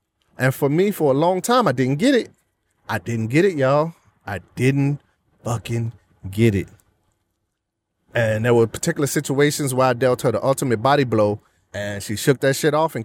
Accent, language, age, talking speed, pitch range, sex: American, English, 30-49, 190 wpm, 110-170 Hz, male